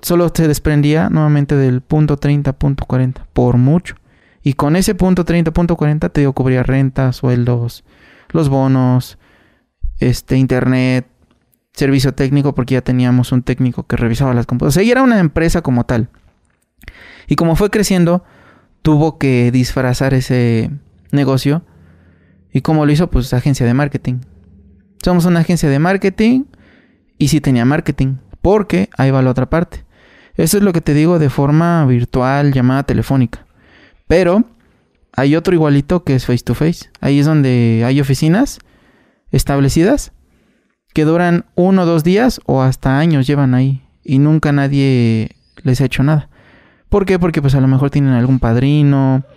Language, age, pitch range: Spanish, 20-39, 125-160 Hz